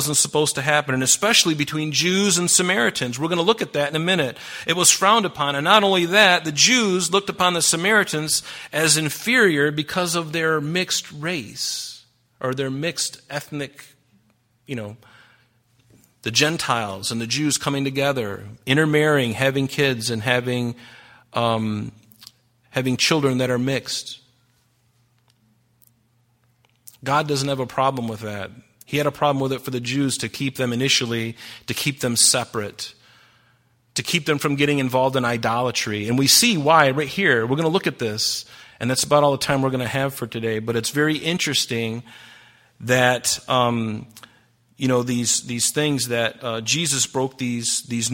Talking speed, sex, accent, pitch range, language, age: 170 wpm, male, American, 120-150 Hz, English, 40-59